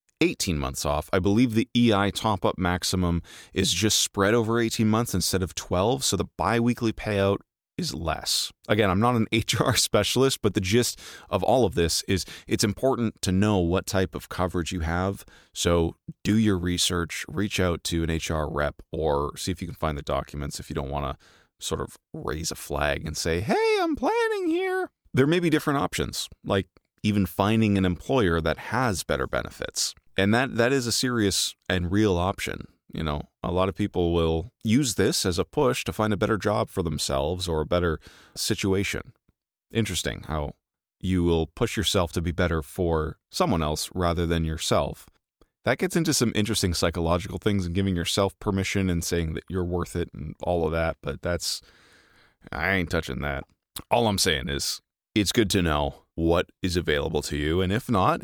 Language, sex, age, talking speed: English, male, 30-49, 195 wpm